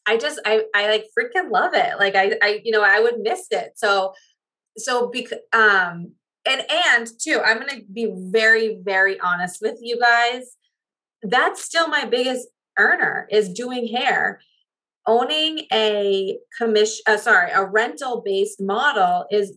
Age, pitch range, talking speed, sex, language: 20-39, 190-250 Hz, 160 wpm, female, English